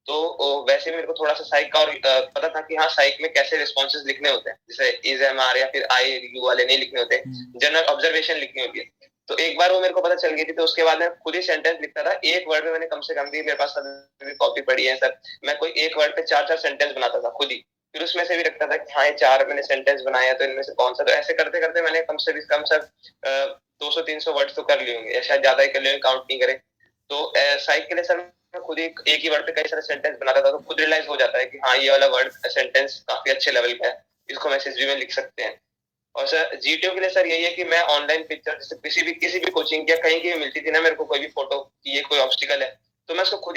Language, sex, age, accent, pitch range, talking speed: Hindi, male, 20-39, native, 140-180 Hz, 200 wpm